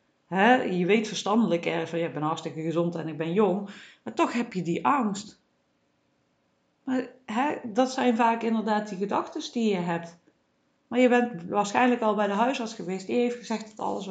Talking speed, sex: 170 wpm, female